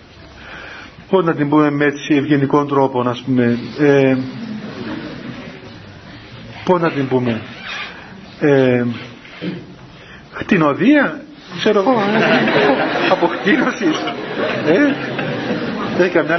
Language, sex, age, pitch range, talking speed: Greek, male, 50-69, 145-220 Hz, 80 wpm